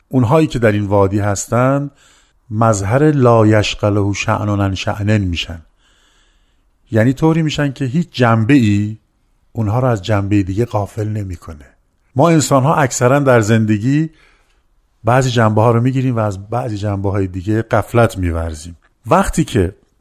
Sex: male